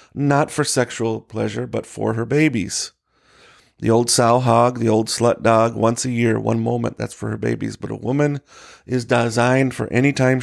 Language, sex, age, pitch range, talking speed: English, male, 30-49, 110-130 Hz, 190 wpm